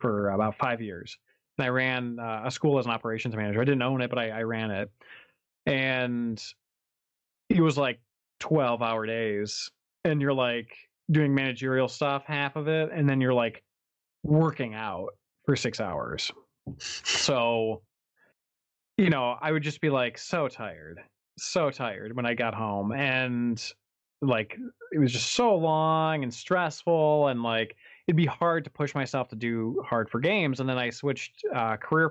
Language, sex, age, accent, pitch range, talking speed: English, male, 20-39, American, 115-155 Hz, 170 wpm